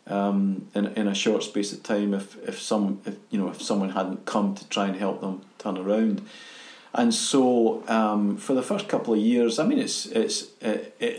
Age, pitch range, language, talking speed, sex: 40-59, 100-120 Hz, English, 210 wpm, male